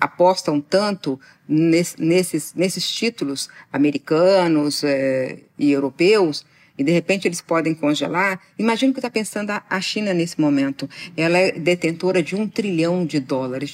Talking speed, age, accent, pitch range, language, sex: 135 wpm, 50-69, Brazilian, 150-205 Hz, Portuguese, female